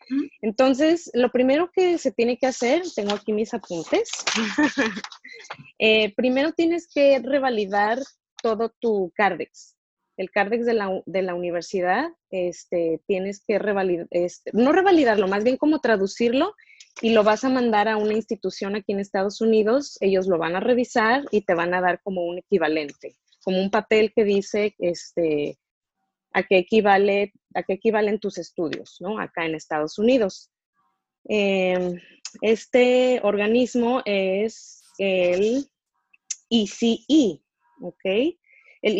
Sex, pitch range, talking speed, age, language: female, 190-255 Hz, 130 wpm, 20-39, Spanish